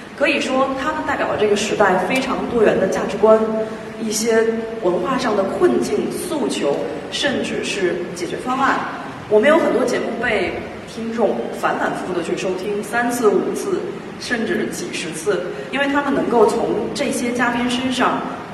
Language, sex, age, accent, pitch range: Chinese, female, 30-49, native, 205-280 Hz